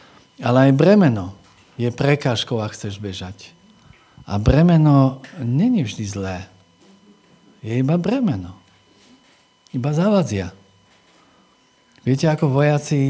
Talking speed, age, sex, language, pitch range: 95 wpm, 50-69, male, Slovak, 110-140 Hz